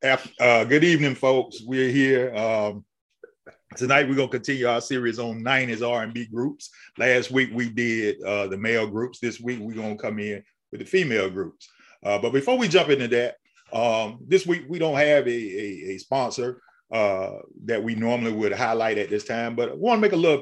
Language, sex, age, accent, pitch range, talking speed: English, male, 30-49, American, 105-130 Hz, 205 wpm